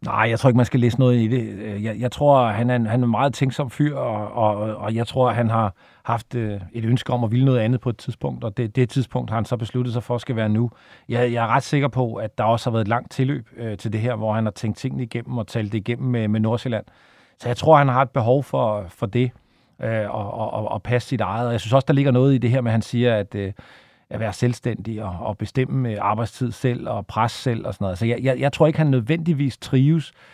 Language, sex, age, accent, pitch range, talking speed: Danish, male, 40-59, native, 110-130 Hz, 260 wpm